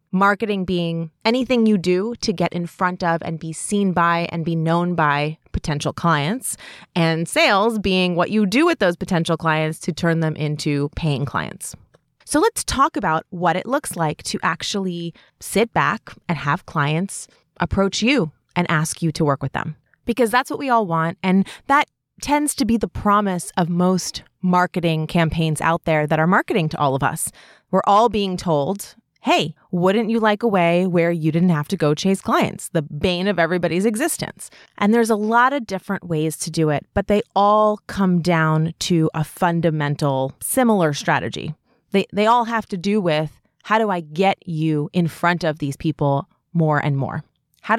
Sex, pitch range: female, 160-210 Hz